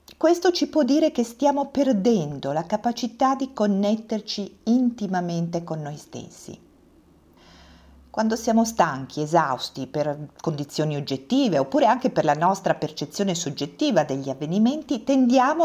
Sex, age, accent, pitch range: female, 50-69, native, 160-255 Hz